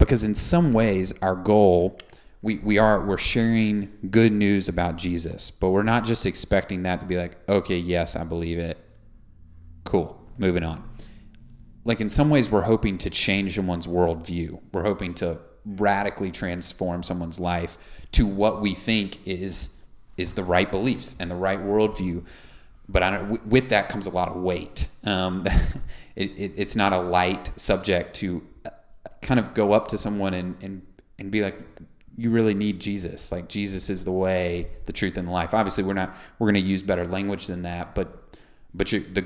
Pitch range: 90-100 Hz